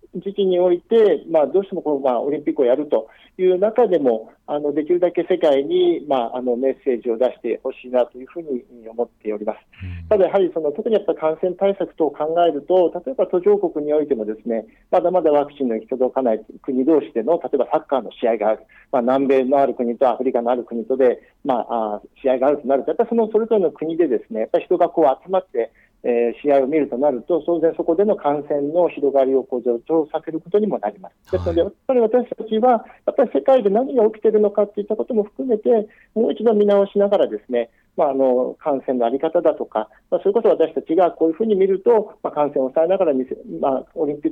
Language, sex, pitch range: Japanese, male, 130-205 Hz